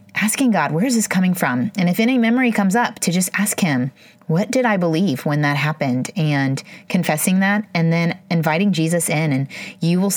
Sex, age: female, 30-49